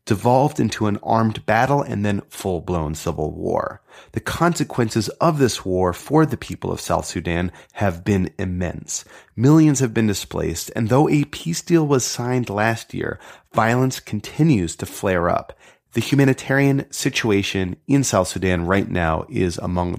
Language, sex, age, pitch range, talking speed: English, male, 30-49, 90-135 Hz, 155 wpm